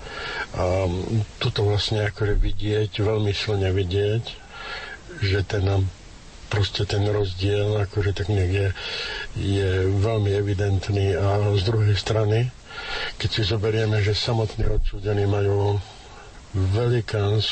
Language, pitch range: Slovak, 100-110 Hz